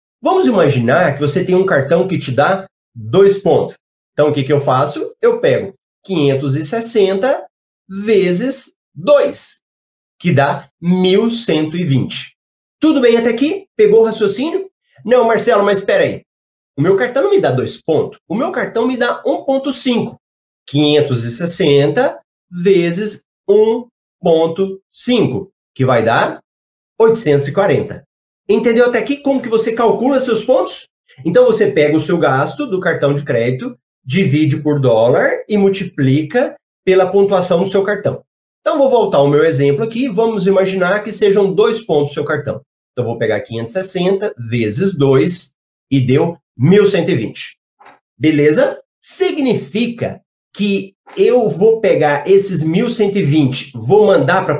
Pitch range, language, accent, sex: 150-225 Hz, Portuguese, Brazilian, male